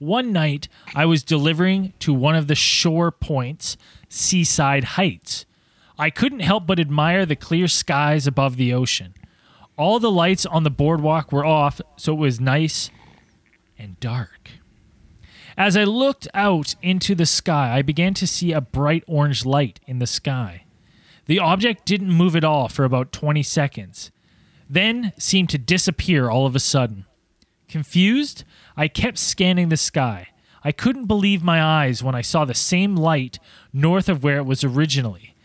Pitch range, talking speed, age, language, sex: 140-180 Hz, 165 wpm, 20-39, English, male